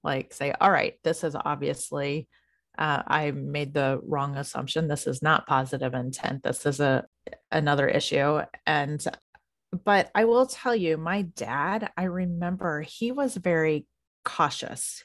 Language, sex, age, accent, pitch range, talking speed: English, female, 30-49, American, 150-195 Hz, 150 wpm